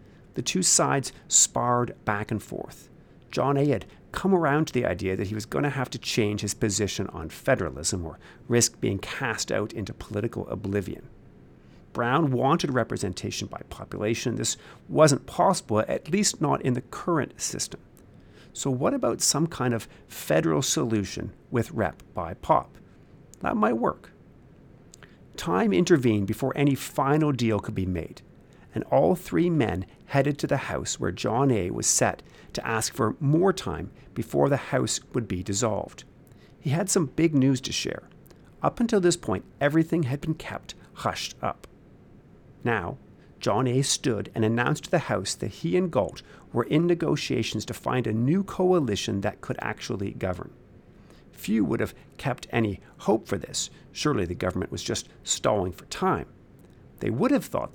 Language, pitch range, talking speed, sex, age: English, 105-150 Hz, 165 wpm, male, 50-69